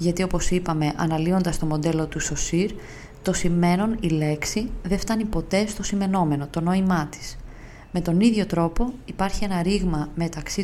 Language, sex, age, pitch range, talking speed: Greek, female, 20-39, 155-200 Hz, 160 wpm